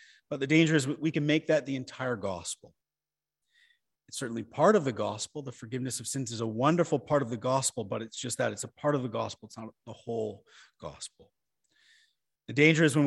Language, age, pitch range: English, 40-59, 115-150 Hz